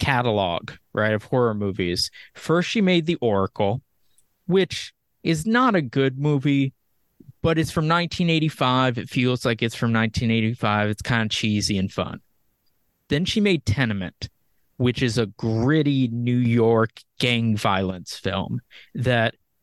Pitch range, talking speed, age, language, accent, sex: 110-140 Hz, 140 wpm, 20-39, English, American, male